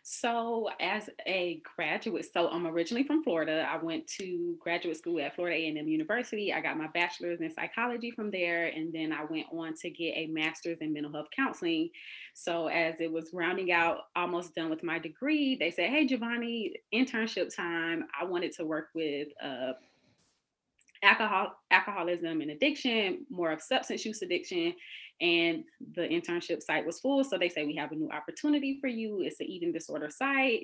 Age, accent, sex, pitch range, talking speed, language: 20-39, American, female, 165-260 Hz, 180 wpm, English